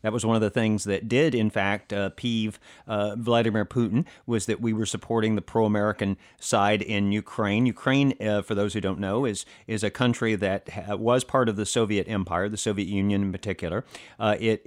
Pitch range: 100-125 Hz